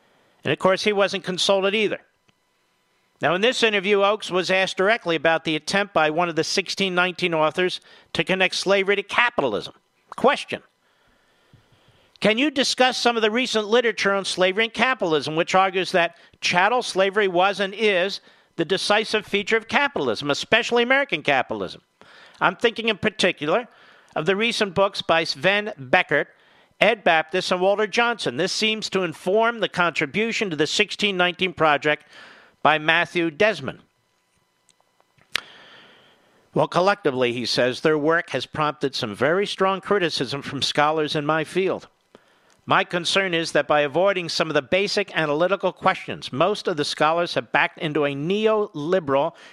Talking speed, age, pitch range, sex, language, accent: 150 wpm, 50-69, 160-210 Hz, male, English, American